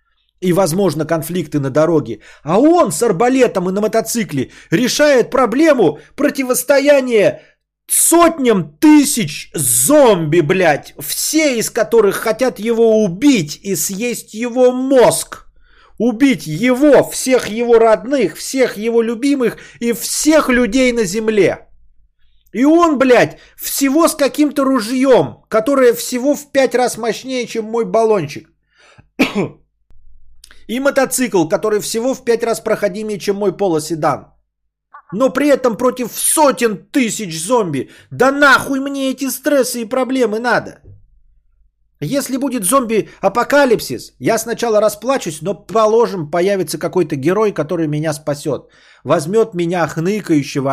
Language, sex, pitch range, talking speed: Bulgarian, male, 155-255 Hz, 120 wpm